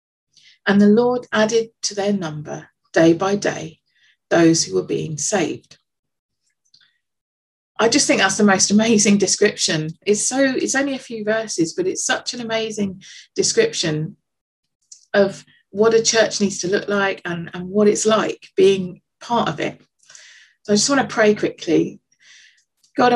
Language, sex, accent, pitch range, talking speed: English, female, British, 175-225 Hz, 160 wpm